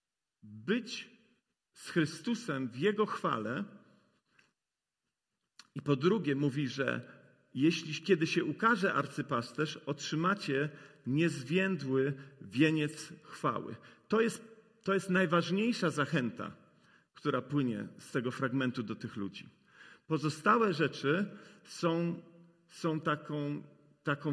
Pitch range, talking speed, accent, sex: 140-185 Hz, 100 wpm, native, male